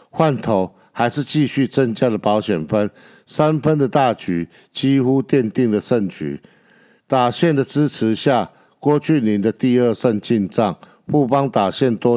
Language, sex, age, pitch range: Chinese, male, 60-79, 105-135 Hz